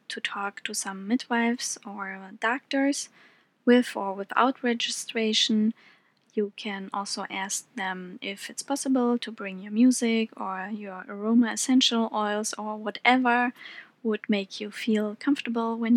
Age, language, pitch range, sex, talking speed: 20-39, English, 205-240 Hz, female, 135 wpm